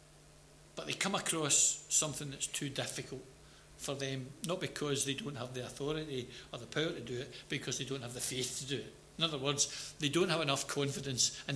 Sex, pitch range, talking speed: male, 135-165 Hz, 220 wpm